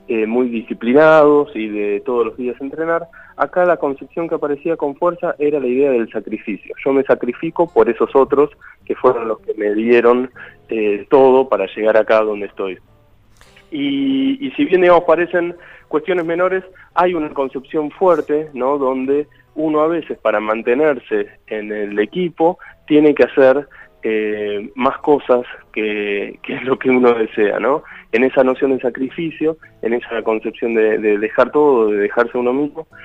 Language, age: Spanish, 20-39